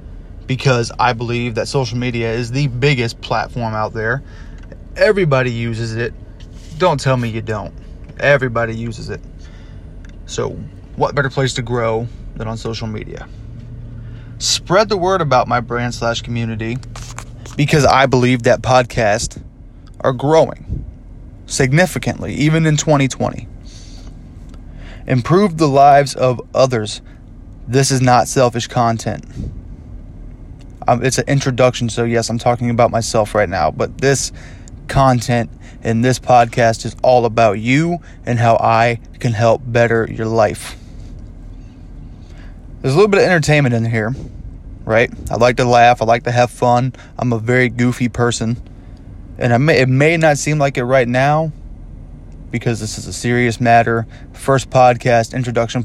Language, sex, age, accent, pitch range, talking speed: English, male, 20-39, American, 110-130 Hz, 145 wpm